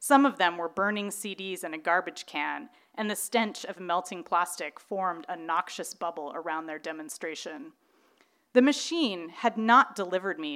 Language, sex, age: English, female, 30-49